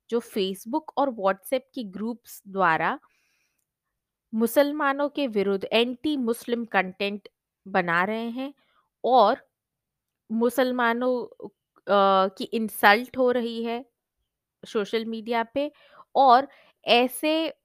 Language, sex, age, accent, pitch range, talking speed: Hindi, female, 20-39, native, 195-260 Hz, 95 wpm